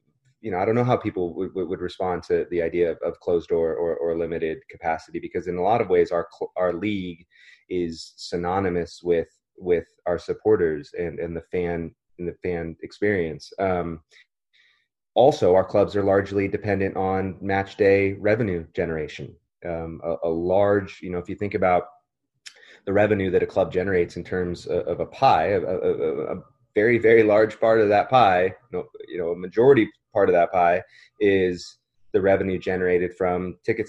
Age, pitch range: 30-49, 85-135 Hz